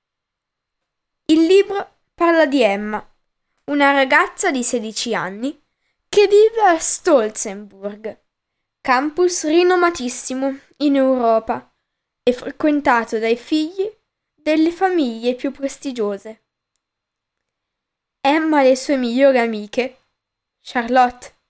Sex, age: female, 10-29